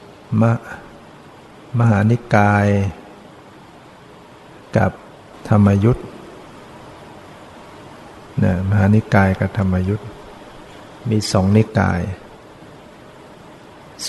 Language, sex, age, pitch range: Thai, male, 60-79, 100-110 Hz